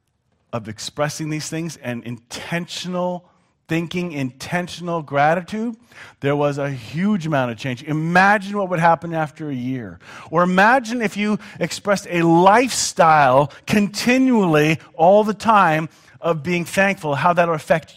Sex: male